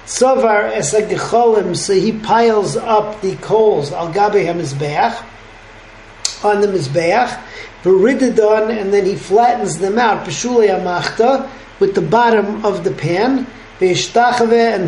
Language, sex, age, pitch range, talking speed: English, male, 40-59, 180-225 Hz, 95 wpm